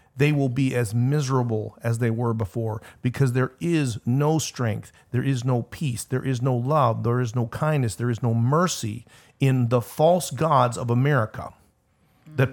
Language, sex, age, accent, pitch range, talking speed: English, male, 50-69, American, 120-150 Hz, 175 wpm